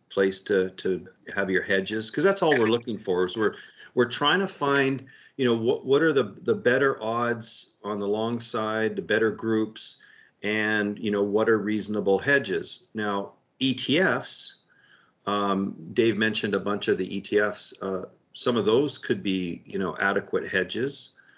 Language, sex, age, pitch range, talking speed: English, male, 50-69, 95-115 Hz, 170 wpm